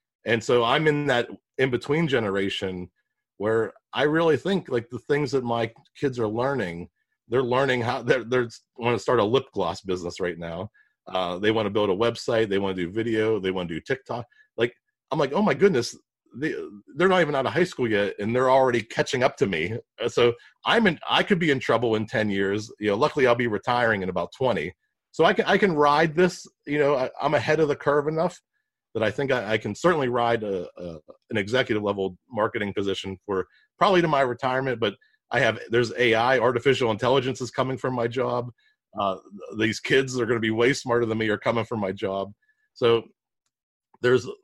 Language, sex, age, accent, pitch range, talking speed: English, male, 40-59, American, 105-145 Hz, 210 wpm